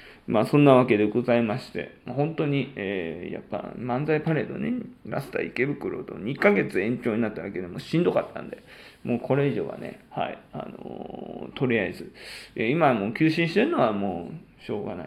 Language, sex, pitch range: Japanese, male, 120-175 Hz